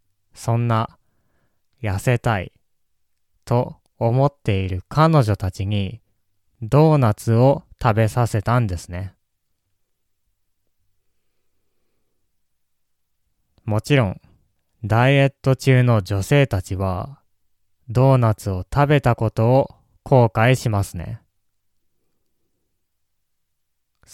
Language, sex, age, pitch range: Japanese, male, 20-39, 95-125 Hz